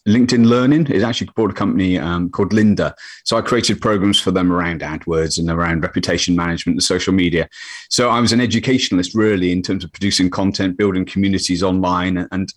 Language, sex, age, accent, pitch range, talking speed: English, male, 30-49, British, 95-120 Hz, 190 wpm